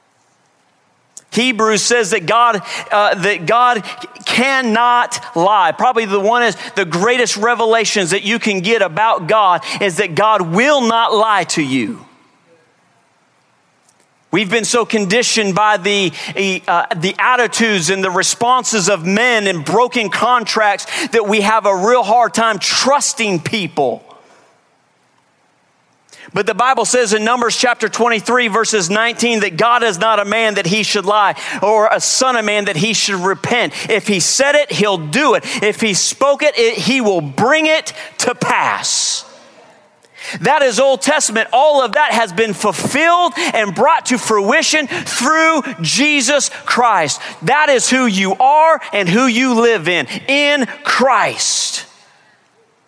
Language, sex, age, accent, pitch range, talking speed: English, male, 40-59, American, 205-245 Hz, 150 wpm